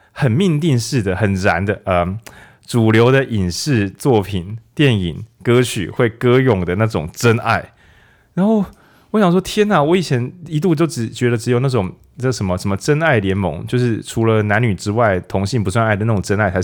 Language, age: Chinese, 20-39